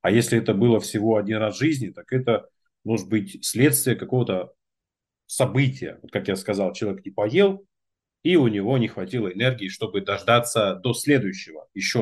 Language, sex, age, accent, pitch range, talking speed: Russian, male, 30-49, native, 105-130 Hz, 170 wpm